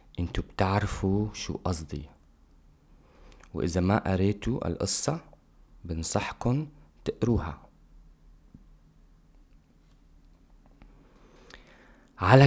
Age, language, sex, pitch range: 30-49, English, male, 80-105 Hz